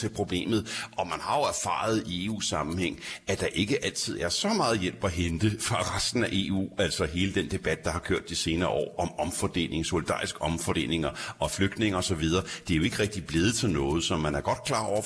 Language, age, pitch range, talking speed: Danish, 60-79, 90-110 Hz, 220 wpm